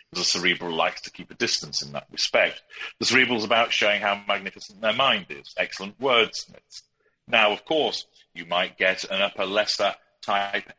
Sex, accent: male, British